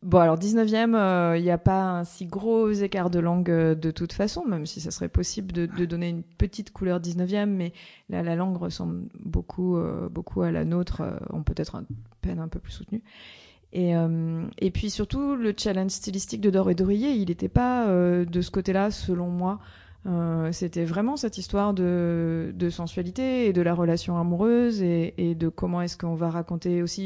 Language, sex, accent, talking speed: French, female, French, 205 wpm